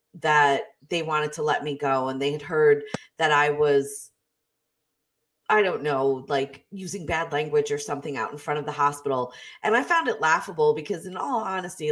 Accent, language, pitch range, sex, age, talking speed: American, English, 145-215 Hz, female, 20-39, 190 wpm